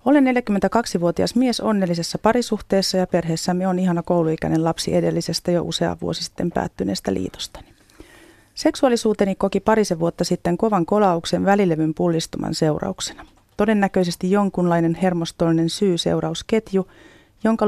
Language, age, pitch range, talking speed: Finnish, 30-49, 170-210 Hz, 110 wpm